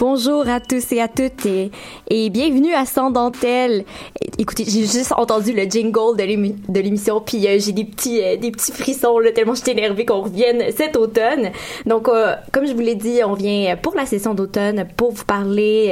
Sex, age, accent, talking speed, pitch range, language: female, 20-39, Canadian, 210 wpm, 205-250 Hz, French